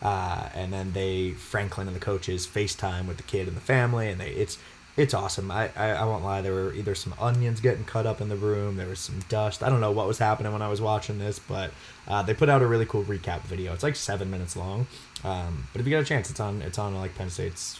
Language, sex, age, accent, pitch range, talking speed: English, male, 20-39, American, 95-120 Hz, 270 wpm